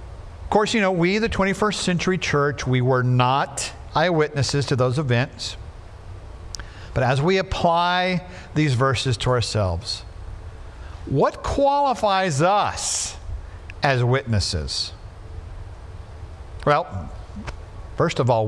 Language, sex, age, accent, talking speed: English, male, 50-69, American, 105 wpm